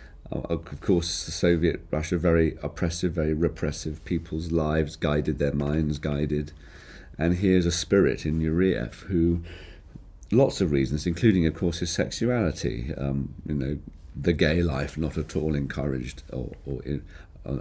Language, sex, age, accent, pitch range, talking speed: English, male, 40-59, British, 70-85 Hz, 140 wpm